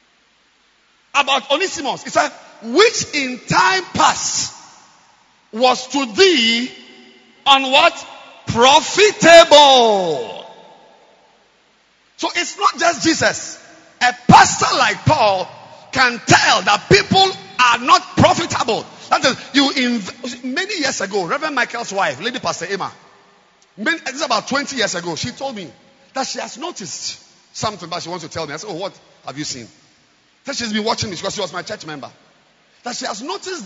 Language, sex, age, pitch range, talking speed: English, male, 50-69, 220-315 Hz, 150 wpm